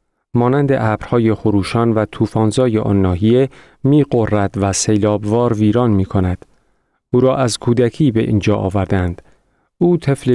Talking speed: 115 wpm